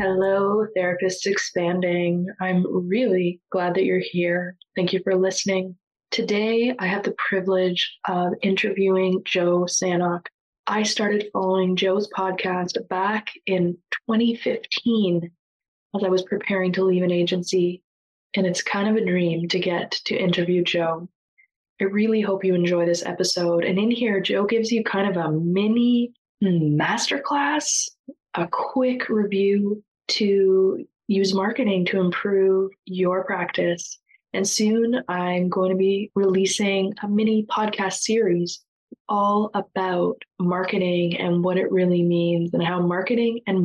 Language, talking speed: English, 135 wpm